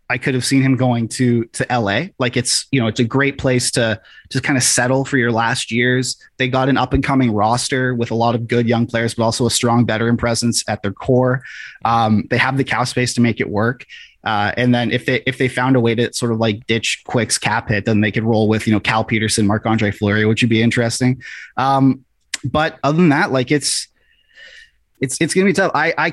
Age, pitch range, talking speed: 20-39, 115-135 Hz, 250 wpm